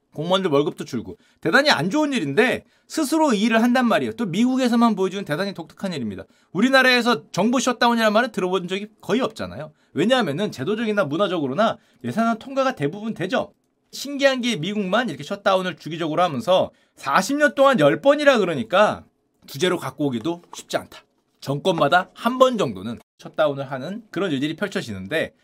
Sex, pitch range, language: male, 190-250 Hz, Korean